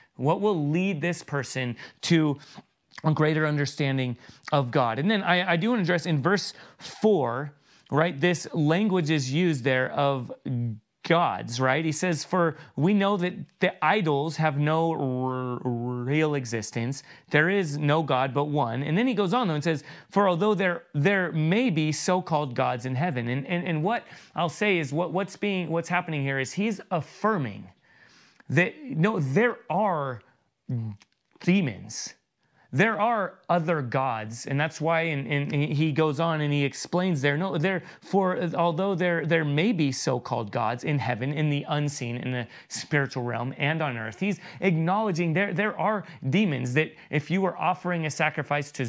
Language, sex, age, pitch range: English, male, 30-49, 135-180 Hz